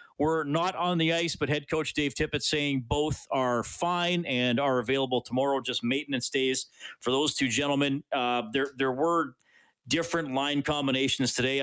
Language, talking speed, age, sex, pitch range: English, 170 wpm, 40-59, male, 120-165 Hz